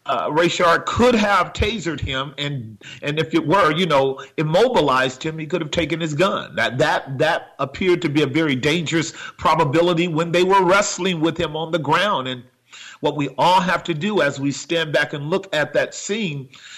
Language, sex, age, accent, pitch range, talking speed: English, male, 40-59, American, 125-160 Hz, 200 wpm